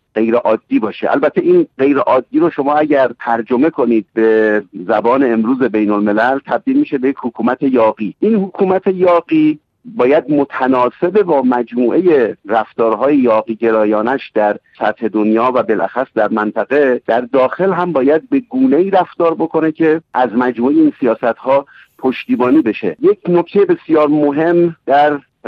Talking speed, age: 140 wpm, 50-69